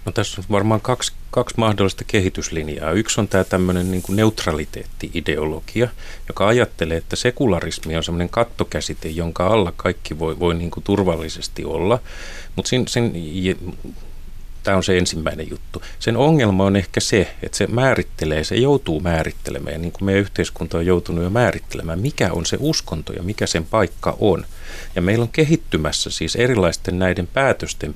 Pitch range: 85-110 Hz